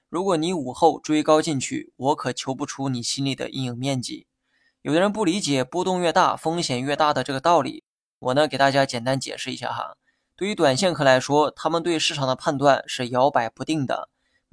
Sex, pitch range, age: male, 130-160 Hz, 20-39